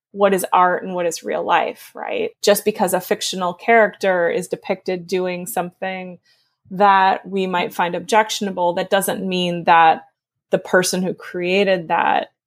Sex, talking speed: female, 155 wpm